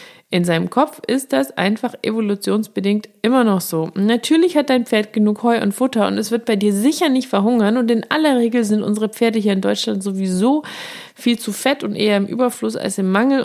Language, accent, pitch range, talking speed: German, German, 195-250 Hz, 210 wpm